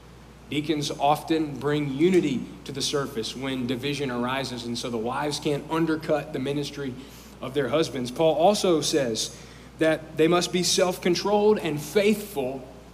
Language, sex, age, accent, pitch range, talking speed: English, male, 40-59, American, 135-165 Hz, 150 wpm